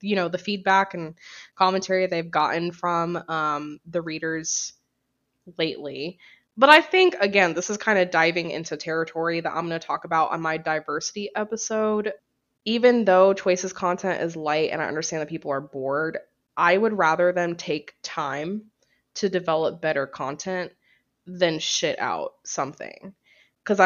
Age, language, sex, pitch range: 20-39, English, female, 160-195 Hz